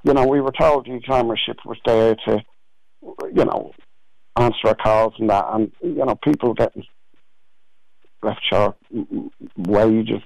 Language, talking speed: English, 145 wpm